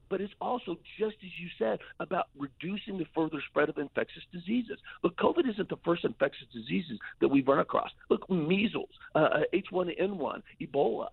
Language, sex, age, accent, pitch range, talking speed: English, male, 50-69, American, 135-180 Hz, 165 wpm